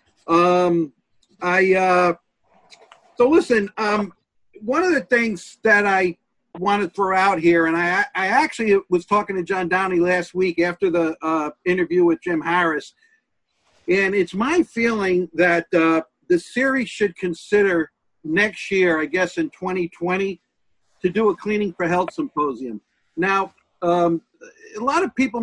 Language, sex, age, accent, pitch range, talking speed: English, male, 50-69, American, 170-205 Hz, 150 wpm